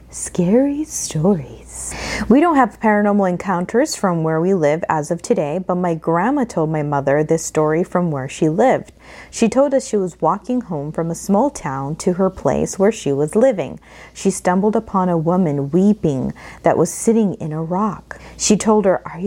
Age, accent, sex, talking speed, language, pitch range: 30-49, American, female, 185 wpm, English, 165-210 Hz